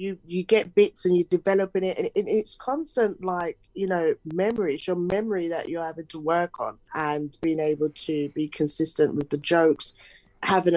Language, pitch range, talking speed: English, 150-185 Hz, 190 wpm